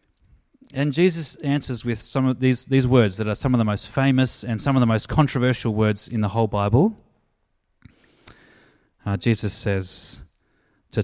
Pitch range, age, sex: 105-145 Hz, 30-49, male